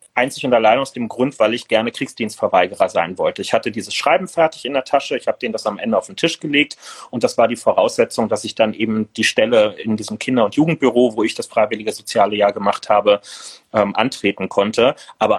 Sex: male